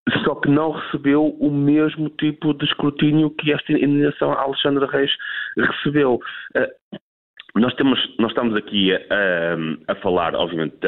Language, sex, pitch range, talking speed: Portuguese, male, 105-150 Hz, 130 wpm